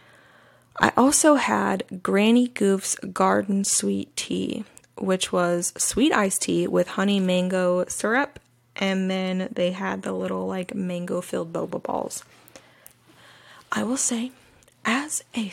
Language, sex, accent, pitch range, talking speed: English, female, American, 165-225 Hz, 125 wpm